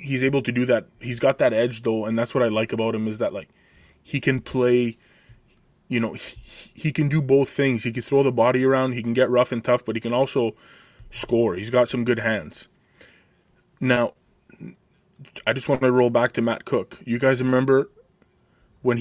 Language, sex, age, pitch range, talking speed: English, male, 20-39, 115-130 Hz, 210 wpm